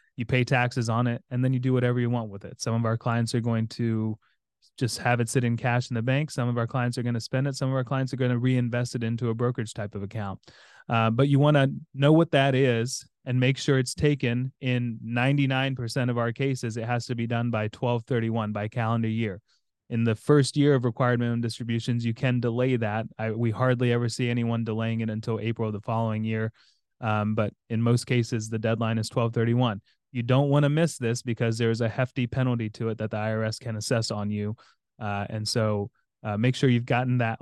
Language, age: English, 20-39